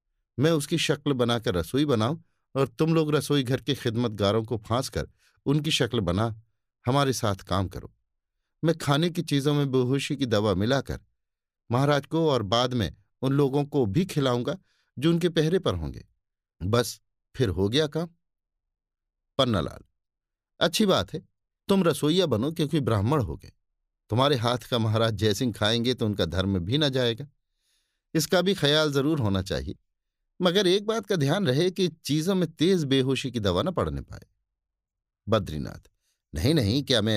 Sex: male